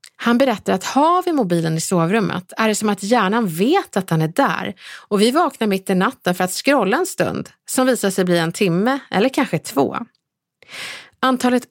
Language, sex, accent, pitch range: Swedish, female, native, 180-255 Hz